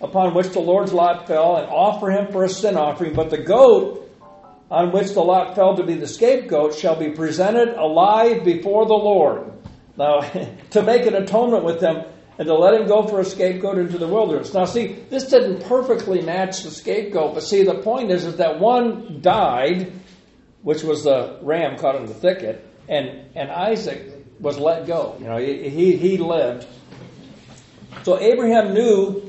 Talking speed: 180 wpm